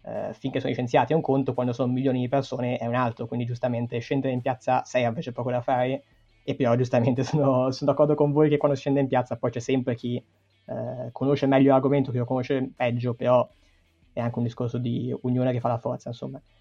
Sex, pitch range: male, 120-140 Hz